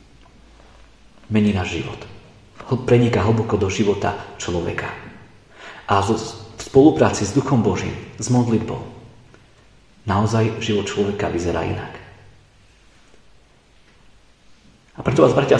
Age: 40-59